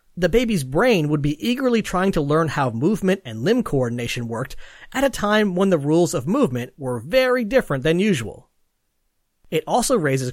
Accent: American